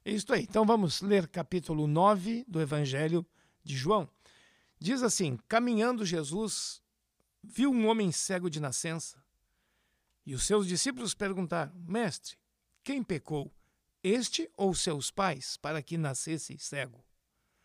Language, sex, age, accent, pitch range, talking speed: Portuguese, male, 60-79, Brazilian, 150-210 Hz, 125 wpm